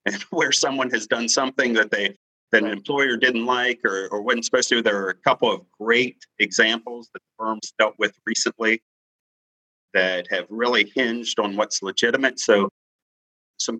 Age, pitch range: 40-59, 105-125 Hz